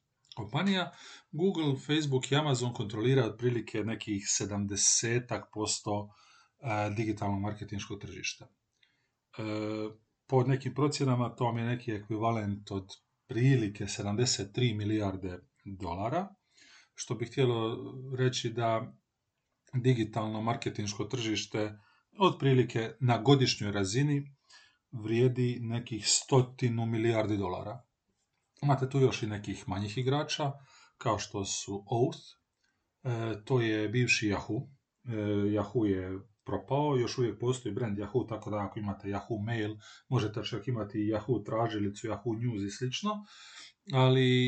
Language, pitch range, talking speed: Croatian, 105-130 Hz, 115 wpm